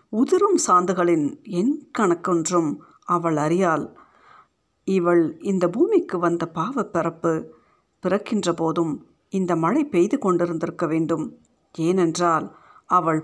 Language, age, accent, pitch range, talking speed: Tamil, 50-69, native, 165-240 Hz, 90 wpm